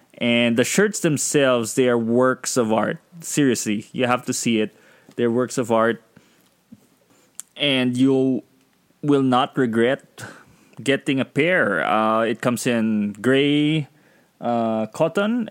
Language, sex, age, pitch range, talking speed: English, male, 20-39, 110-130 Hz, 130 wpm